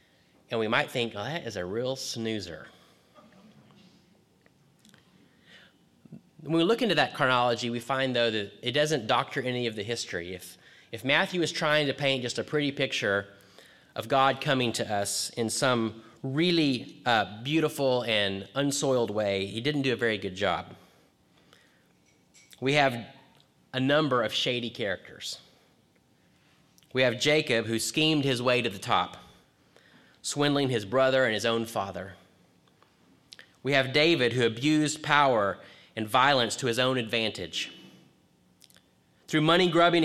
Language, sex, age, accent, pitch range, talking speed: English, male, 30-49, American, 110-145 Hz, 145 wpm